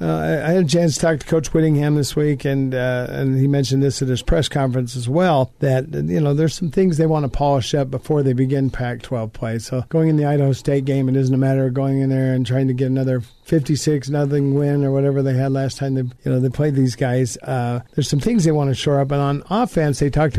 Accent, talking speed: American, 265 wpm